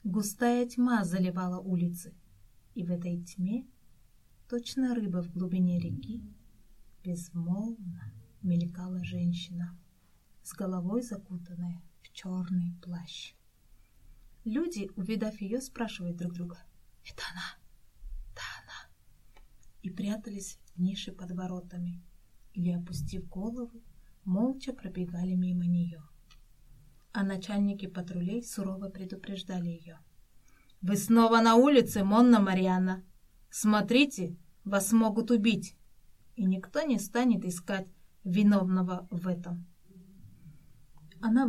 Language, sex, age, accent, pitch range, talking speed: Russian, female, 20-39, native, 175-215 Hz, 100 wpm